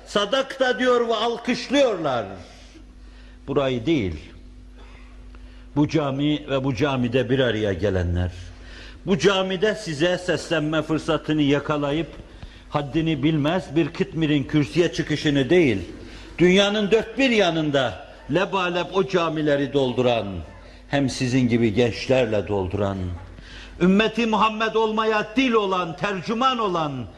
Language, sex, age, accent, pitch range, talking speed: Turkish, male, 60-79, native, 125-200 Hz, 110 wpm